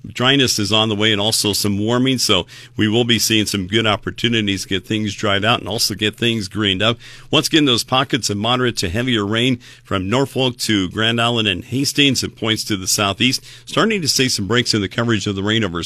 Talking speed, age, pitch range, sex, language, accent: 230 wpm, 50-69, 105-125 Hz, male, English, American